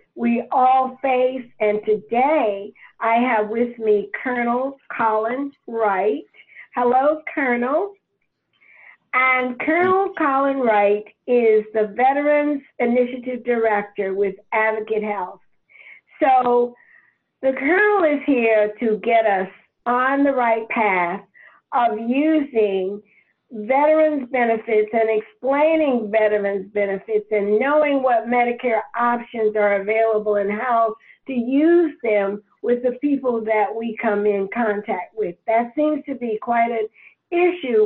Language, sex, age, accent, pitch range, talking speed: English, female, 50-69, American, 215-270 Hz, 115 wpm